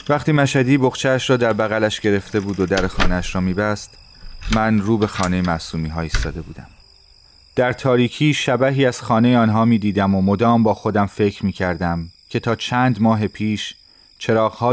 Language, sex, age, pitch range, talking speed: Persian, male, 30-49, 85-110 Hz, 160 wpm